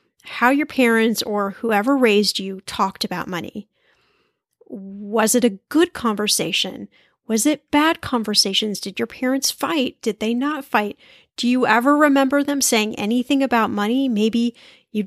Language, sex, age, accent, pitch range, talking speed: English, female, 10-29, American, 210-270 Hz, 150 wpm